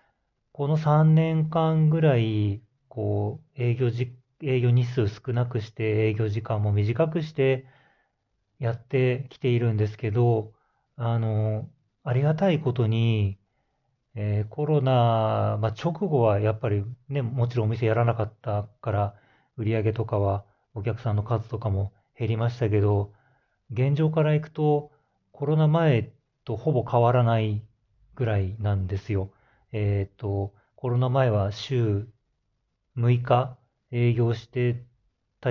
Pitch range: 105-135 Hz